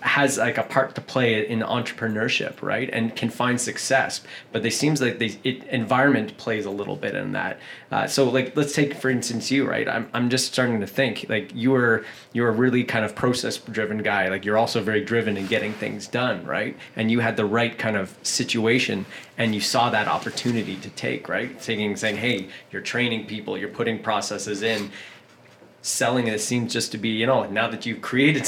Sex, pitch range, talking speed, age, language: male, 110-130 Hz, 220 wpm, 20-39, English